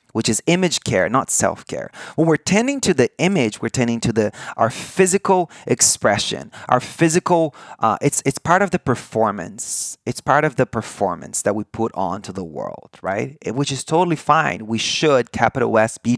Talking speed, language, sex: 185 wpm, English, male